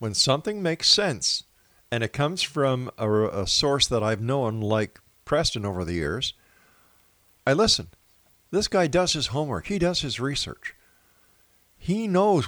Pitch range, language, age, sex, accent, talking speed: 100-140 Hz, English, 50-69, male, American, 155 wpm